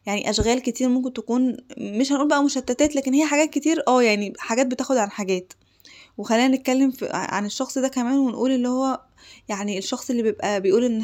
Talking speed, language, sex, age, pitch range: 190 wpm, Arabic, female, 20-39, 210-250 Hz